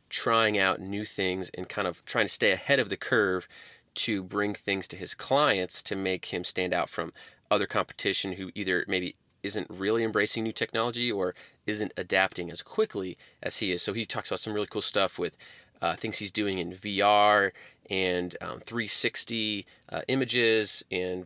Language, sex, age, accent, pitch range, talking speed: English, male, 30-49, American, 90-110 Hz, 185 wpm